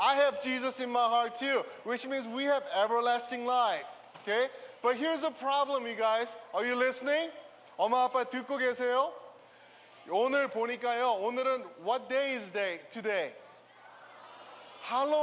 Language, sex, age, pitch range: Korean, male, 20-39, 235-285 Hz